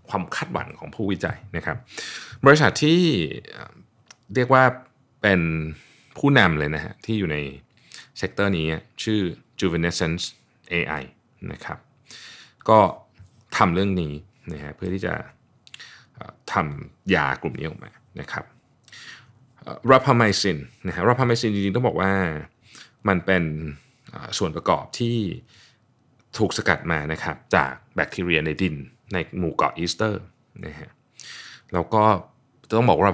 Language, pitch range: Thai, 80-110 Hz